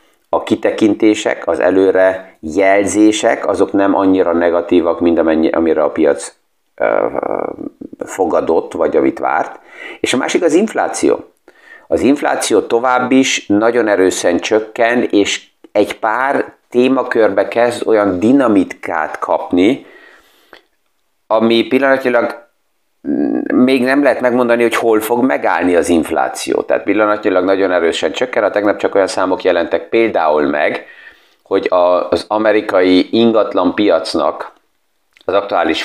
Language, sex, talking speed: Hungarian, male, 115 wpm